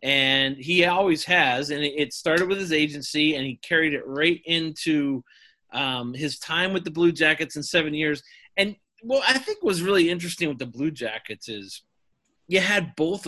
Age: 30-49